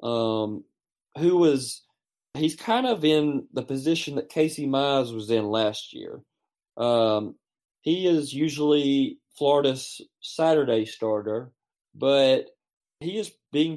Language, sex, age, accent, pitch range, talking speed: English, male, 30-49, American, 115-155 Hz, 120 wpm